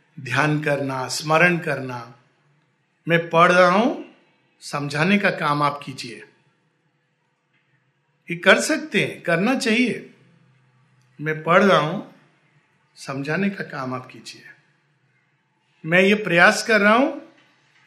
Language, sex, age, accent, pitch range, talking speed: Hindi, male, 50-69, native, 155-235 Hz, 110 wpm